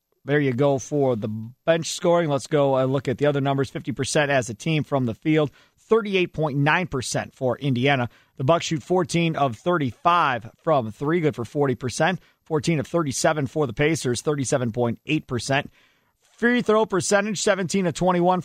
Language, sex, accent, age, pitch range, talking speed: English, male, American, 40-59, 130-165 Hz, 160 wpm